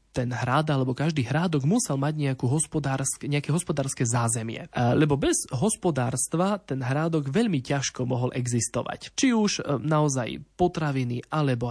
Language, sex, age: Slovak, male, 20-39